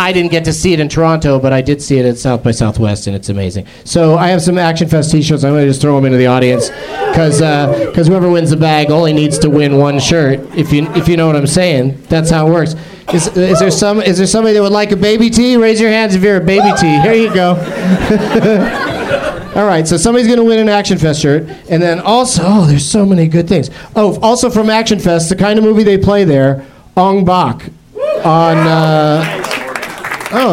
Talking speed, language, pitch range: 240 wpm, English, 150-190 Hz